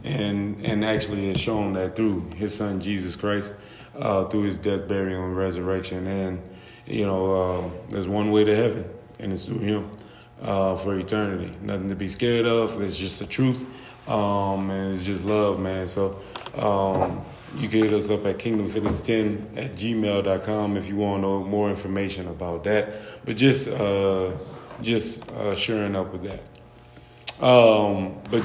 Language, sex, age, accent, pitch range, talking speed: English, male, 20-39, American, 95-110 Hz, 165 wpm